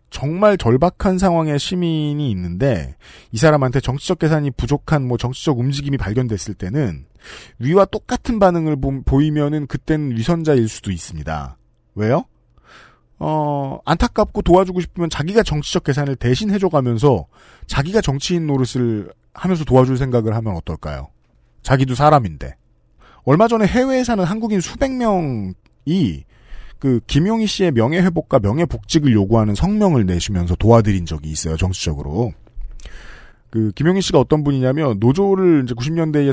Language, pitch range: Korean, 105-170 Hz